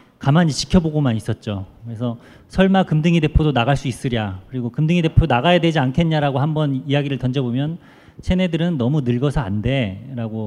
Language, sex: Korean, male